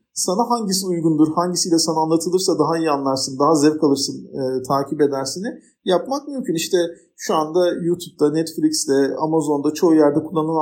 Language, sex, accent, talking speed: Turkish, male, native, 145 wpm